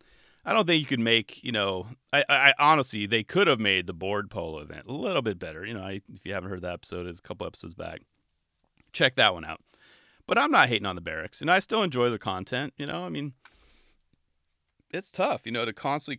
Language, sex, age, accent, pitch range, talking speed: English, male, 30-49, American, 95-140 Hz, 235 wpm